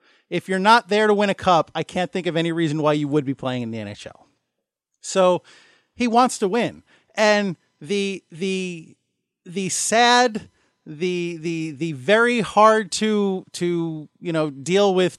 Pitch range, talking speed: 175-225 Hz, 170 wpm